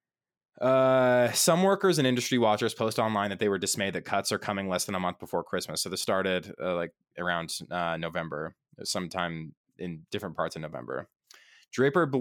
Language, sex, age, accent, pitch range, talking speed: English, male, 20-39, American, 90-120 Hz, 180 wpm